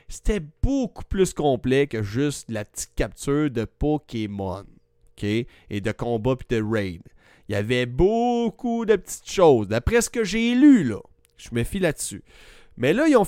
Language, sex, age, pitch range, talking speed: French, male, 30-49, 115-175 Hz, 175 wpm